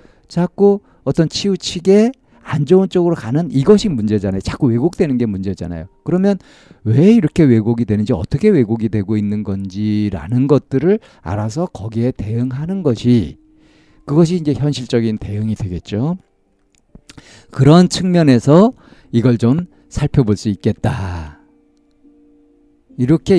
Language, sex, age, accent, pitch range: Korean, male, 50-69, native, 100-155 Hz